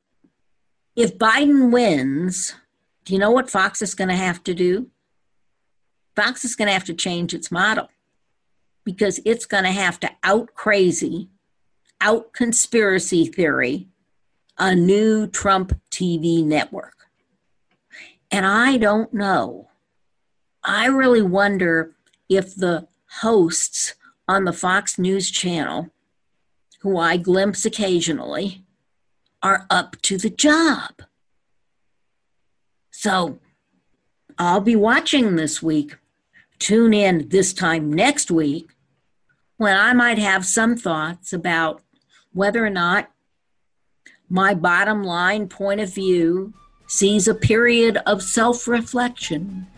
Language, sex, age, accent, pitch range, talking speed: English, female, 60-79, American, 175-220 Hz, 110 wpm